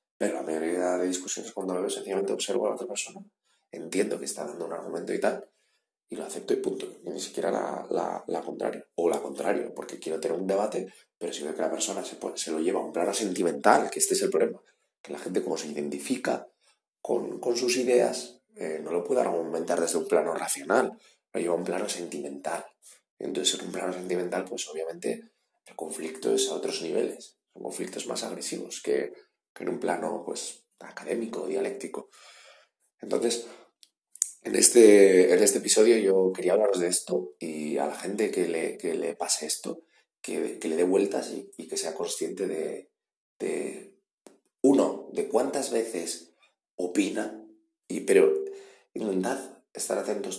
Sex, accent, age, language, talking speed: male, Spanish, 30-49, Spanish, 185 wpm